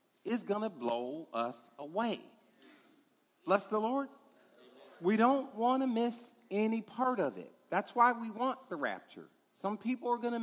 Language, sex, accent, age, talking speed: English, male, American, 50-69, 155 wpm